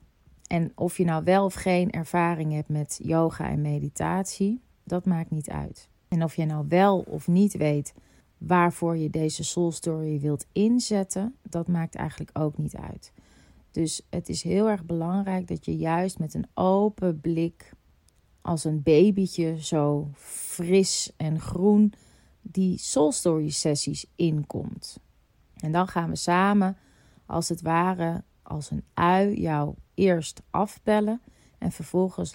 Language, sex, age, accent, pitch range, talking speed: Dutch, female, 30-49, Dutch, 155-185 Hz, 145 wpm